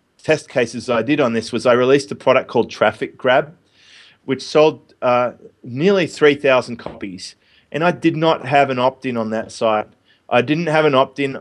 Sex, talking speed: male, 185 wpm